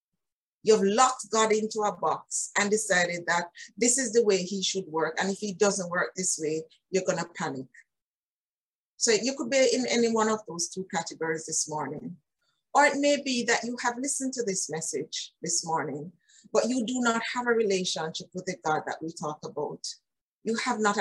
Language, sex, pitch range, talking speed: English, female, 165-220 Hz, 200 wpm